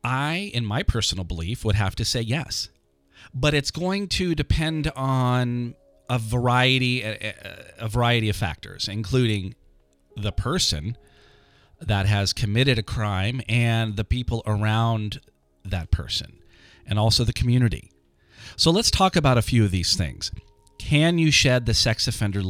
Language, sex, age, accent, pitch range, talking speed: English, male, 40-59, American, 95-125 Hz, 145 wpm